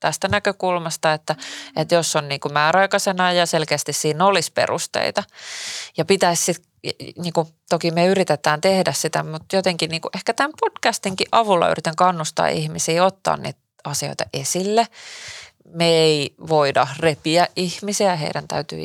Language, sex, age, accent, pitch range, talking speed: Finnish, female, 30-49, native, 150-180 Hz, 125 wpm